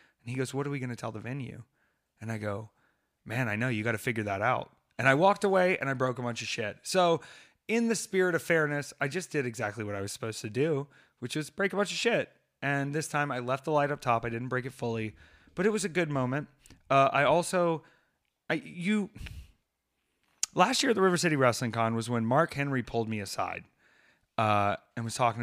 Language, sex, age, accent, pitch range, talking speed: English, male, 30-49, American, 115-145 Hz, 240 wpm